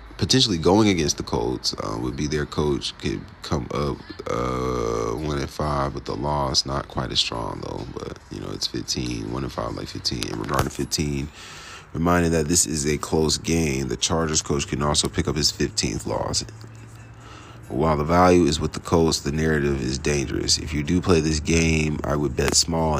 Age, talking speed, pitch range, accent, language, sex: 30-49, 190 wpm, 70-80 Hz, American, English, male